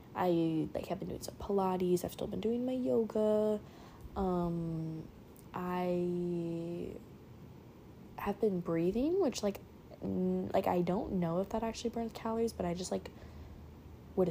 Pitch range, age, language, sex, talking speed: 160-200 Hz, 10-29, English, female, 145 wpm